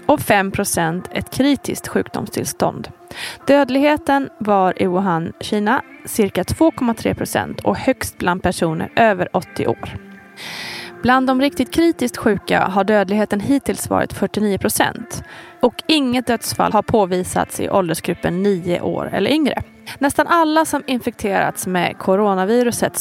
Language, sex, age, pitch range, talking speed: Swedish, female, 30-49, 195-270 Hz, 120 wpm